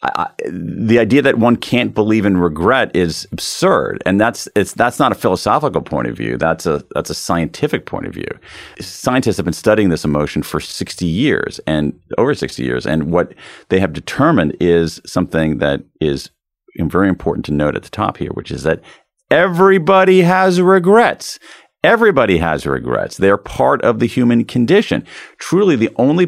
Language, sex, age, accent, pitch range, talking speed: English, male, 40-59, American, 85-120 Hz, 175 wpm